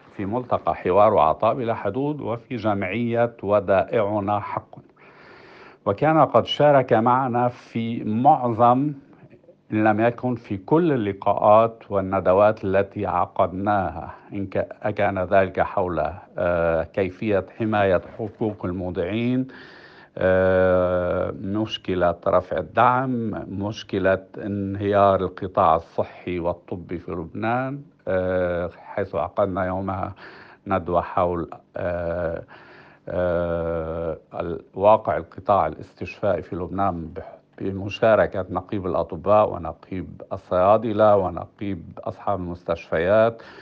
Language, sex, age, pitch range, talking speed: Arabic, male, 50-69, 85-115 Hz, 85 wpm